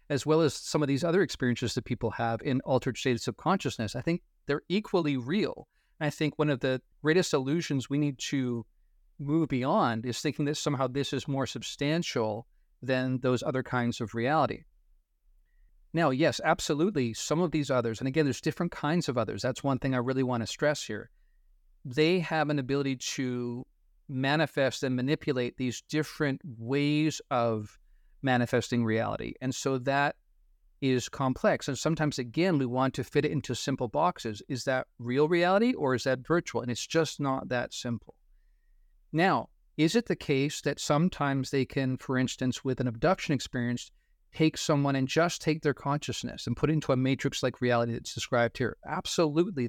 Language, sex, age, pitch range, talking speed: English, male, 40-59, 125-150 Hz, 180 wpm